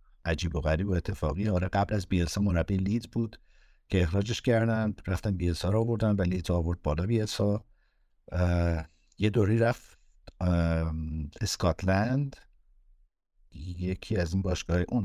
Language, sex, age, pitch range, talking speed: Persian, male, 60-79, 80-100 Hz, 130 wpm